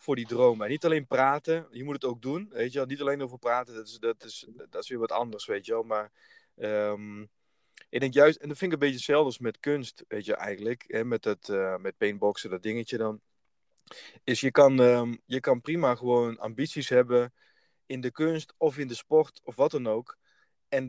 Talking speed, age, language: 225 wpm, 20-39, Dutch